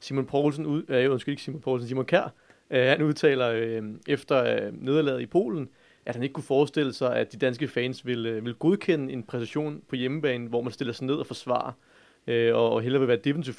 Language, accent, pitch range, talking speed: English, Danish, 120-140 Hz, 215 wpm